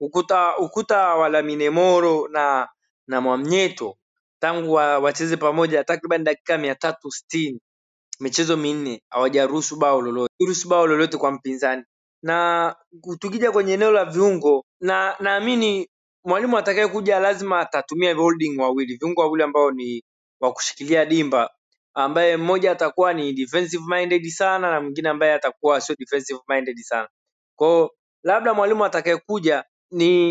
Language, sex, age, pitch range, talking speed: Swahili, male, 20-39, 145-185 Hz, 130 wpm